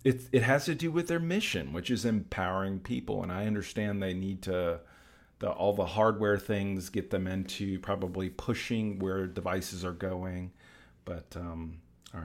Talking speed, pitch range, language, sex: 170 wpm, 90-110 Hz, English, male